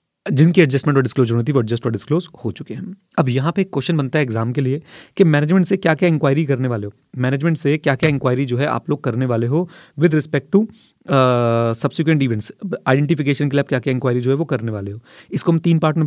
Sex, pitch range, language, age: male, 130-160 Hz, English, 30-49